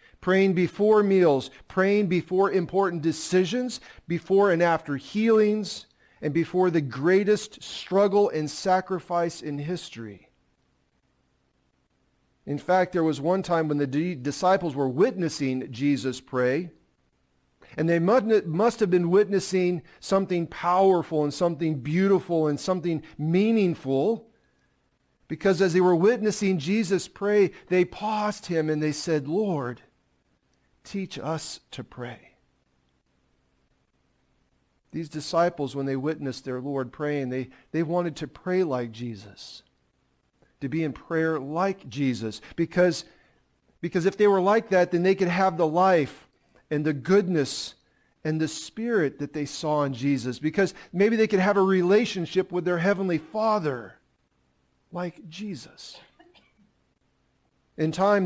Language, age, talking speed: English, 40-59, 130 wpm